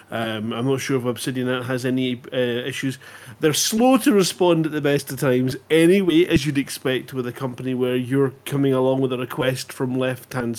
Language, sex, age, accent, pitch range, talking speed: English, male, 30-49, British, 125-145 Hz, 200 wpm